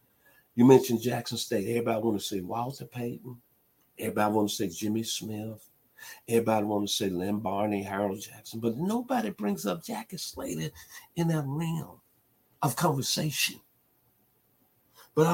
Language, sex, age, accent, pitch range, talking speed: English, male, 50-69, American, 110-150 Hz, 140 wpm